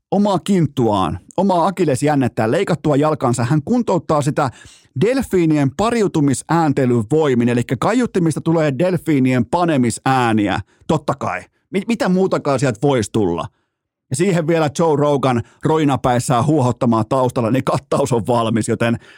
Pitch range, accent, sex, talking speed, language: 115-155 Hz, native, male, 120 wpm, Finnish